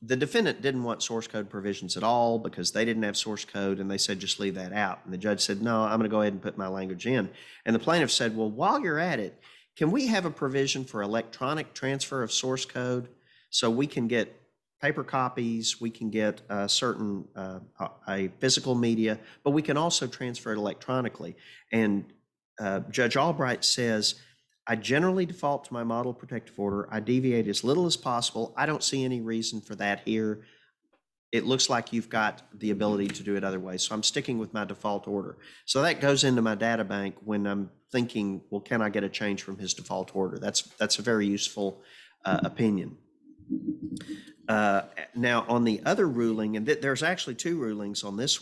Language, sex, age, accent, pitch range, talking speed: English, male, 40-59, American, 105-130 Hz, 205 wpm